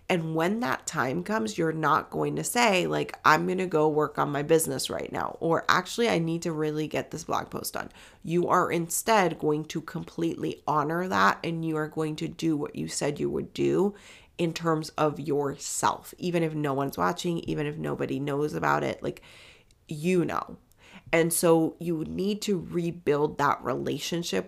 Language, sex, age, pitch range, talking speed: English, female, 30-49, 145-170 Hz, 190 wpm